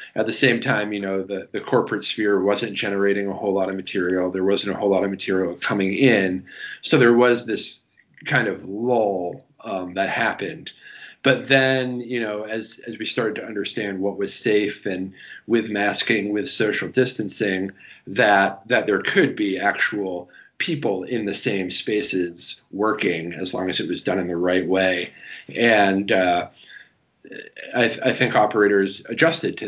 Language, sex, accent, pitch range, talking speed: English, male, American, 95-120 Hz, 175 wpm